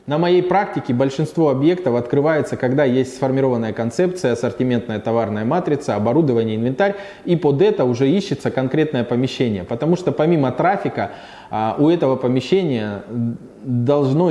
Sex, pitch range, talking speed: male, 120-155 Hz, 125 wpm